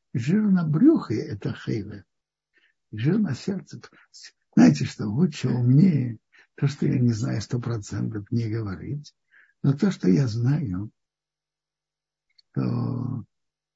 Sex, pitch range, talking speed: male, 120-170 Hz, 115 wpm